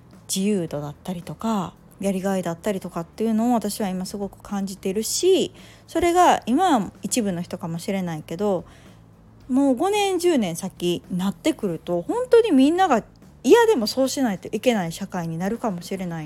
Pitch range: 170-240 Hz